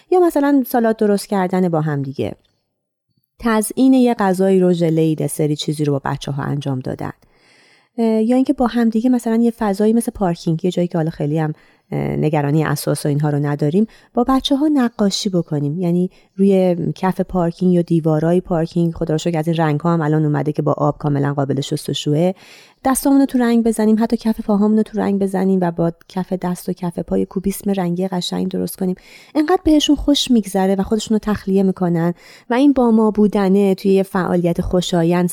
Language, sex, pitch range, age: Persian, female, 165-220 Hz, 30-49